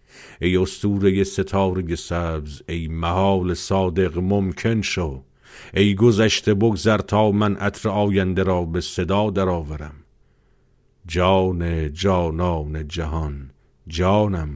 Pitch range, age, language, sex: 85-100 Hz, 50-69, Persian, male